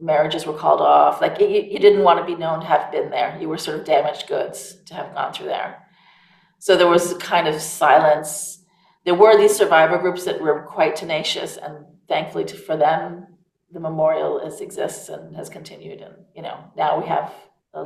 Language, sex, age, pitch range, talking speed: English, female, 40-59, 155-200 Hz, 195 wpm